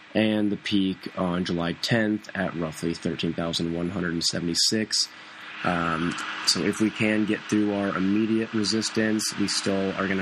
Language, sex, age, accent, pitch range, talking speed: English, male, 20-39, American, 90-110 Hz, 135 wpm